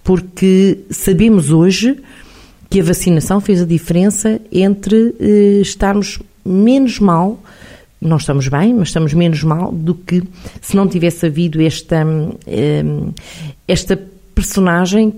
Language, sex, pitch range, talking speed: Portuguese, female, 160-205 Hz, 125 wpm